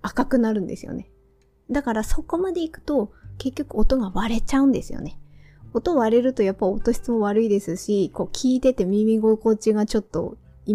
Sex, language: female, Japanese